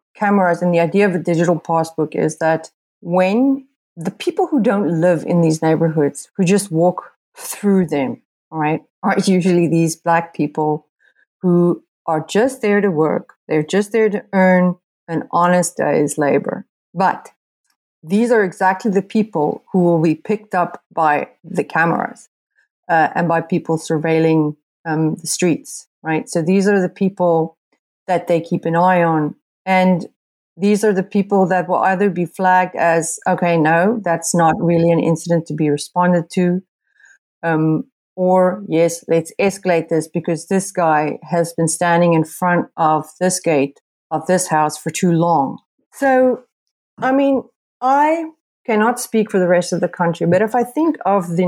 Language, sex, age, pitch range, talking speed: English, female, 30-49, 165-200 Hz, 165 wpm